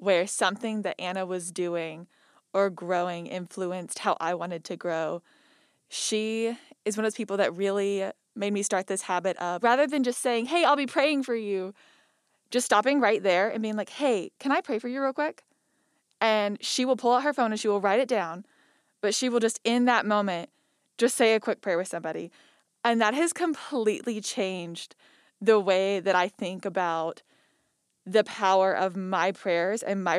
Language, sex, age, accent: English, female, 20-39, American